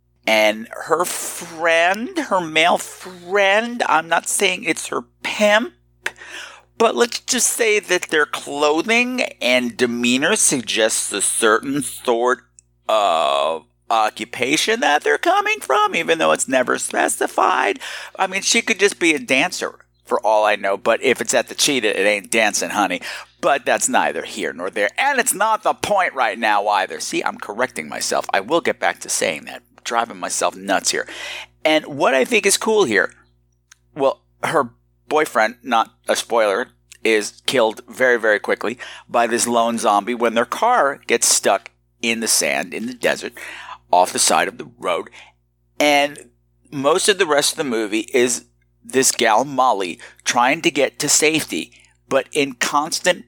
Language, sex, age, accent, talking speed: English, male, 50-69, American, 165 wpm